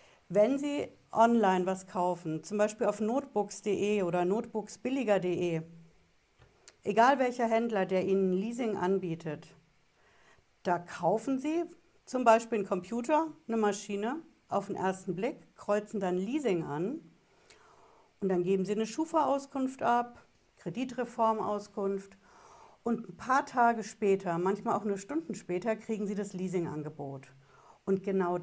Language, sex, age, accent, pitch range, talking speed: German, female, 60-79, German, 180-230 Hz, 125 wpm